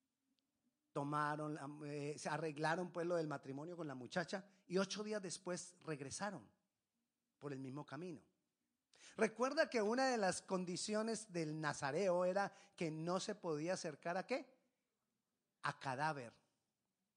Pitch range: 150-250 Hz